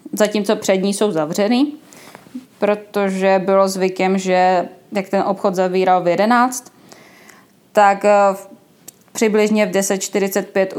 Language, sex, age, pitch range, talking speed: Czech, female, 20-39, 190-210 Hz, 100 wpm